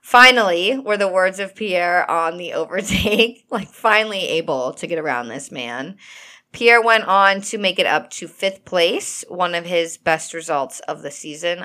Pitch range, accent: 155-205 Hz, American